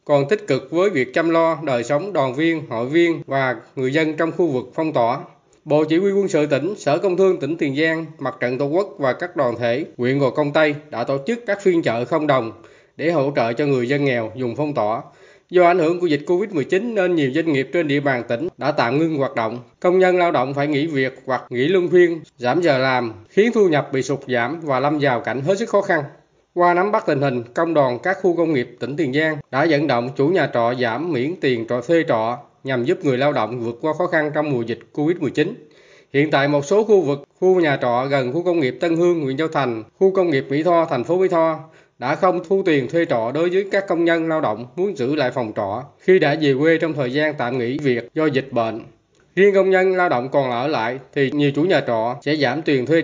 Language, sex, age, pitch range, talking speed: Vietnamese, male, 20-39, 130-170 Hz, 255 wpm